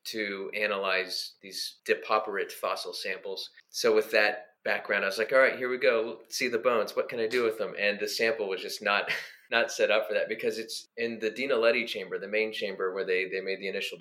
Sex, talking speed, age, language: male, 230 wpm, 30-49, English